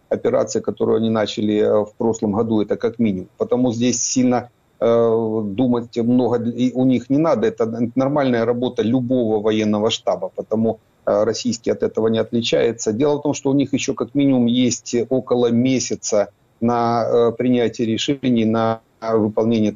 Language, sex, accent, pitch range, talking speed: Ukrainian, male, native, 110-130 Hz, 160 wpm